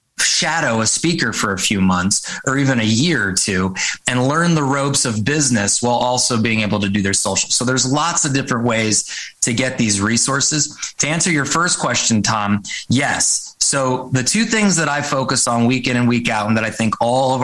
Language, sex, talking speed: English, male, 215 wpm